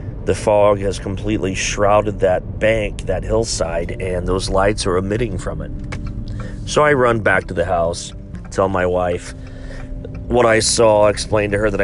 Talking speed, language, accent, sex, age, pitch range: 165 wpm, English, American, male, 40-59, 95-110 Hz